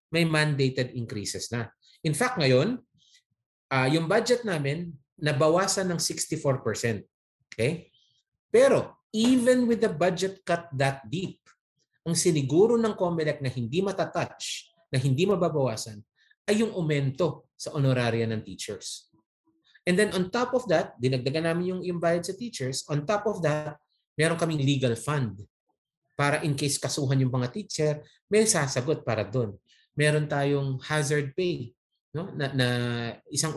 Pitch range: 125-170 Hz